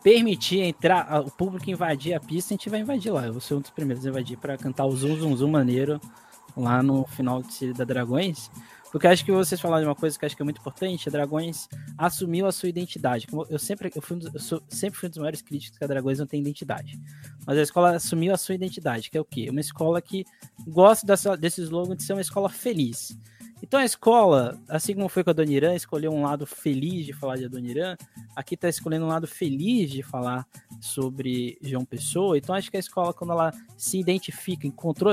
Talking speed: 230 wpm